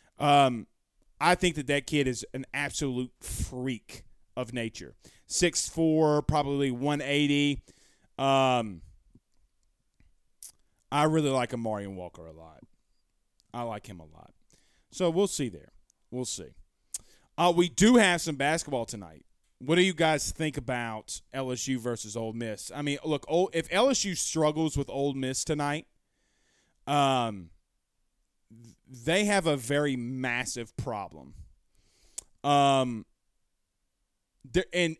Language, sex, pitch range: English, male, 110-160 Hz